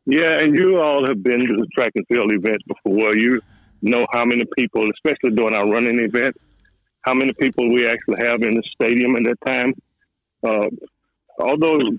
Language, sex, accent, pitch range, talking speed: English, male, American, 110-125 Hz, 185 wpm